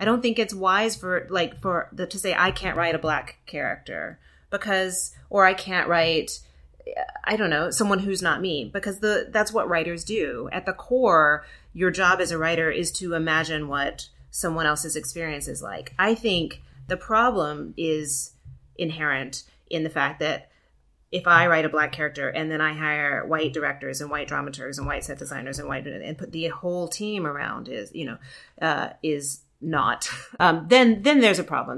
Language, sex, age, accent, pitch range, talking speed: English, female, 30-49, American, 145-180 Hz, 190 wpm